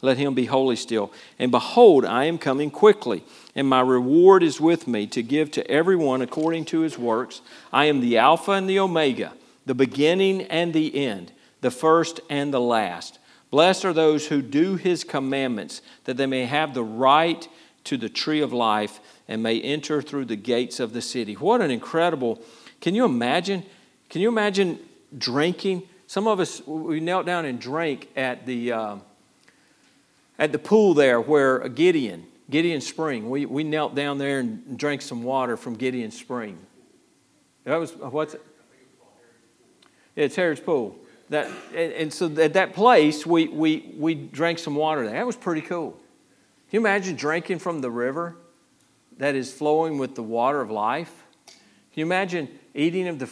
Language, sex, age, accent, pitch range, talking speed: English, male, 50-69, American, 130-175 Hz, 175 wpm